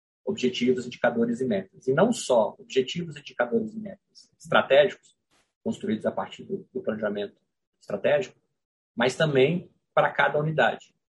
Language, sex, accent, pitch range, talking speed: Portuguese, male, Brazilian, 130-200 Hz, 130 wpm